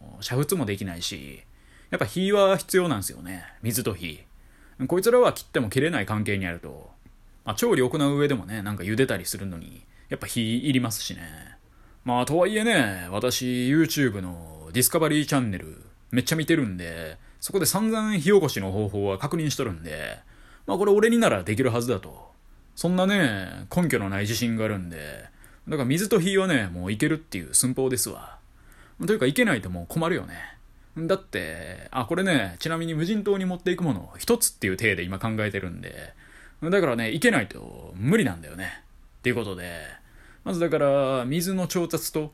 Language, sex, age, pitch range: Japanese, male, 20-39, 100-165 Hz